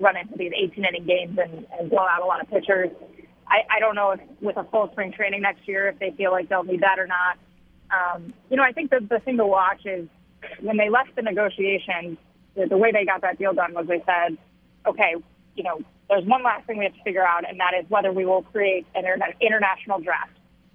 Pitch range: 185-215 Hz